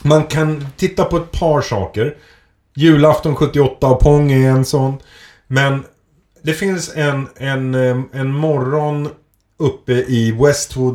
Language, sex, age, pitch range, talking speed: Swedish, male, 30-49, 105-145 Hz, 130 wpm